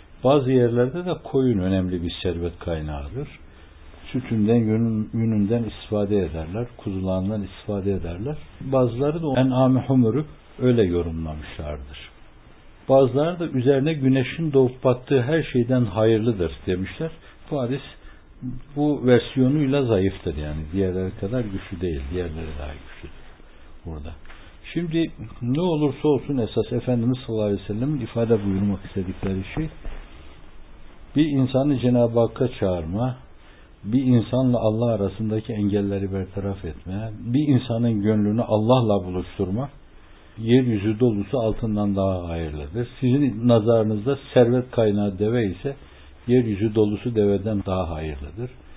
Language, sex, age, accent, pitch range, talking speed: Turkish, male, 60-79, native, 90-125 Hz, 110 wpm